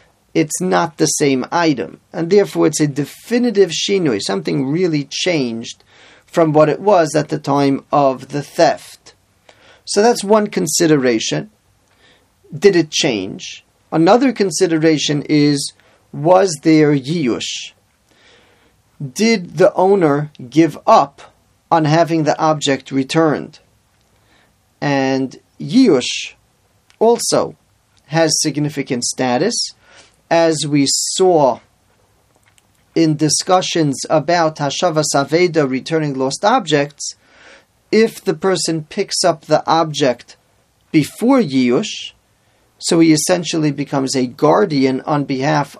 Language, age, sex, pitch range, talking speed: English, 40-59, male, 135-175 Hz, 105 wpm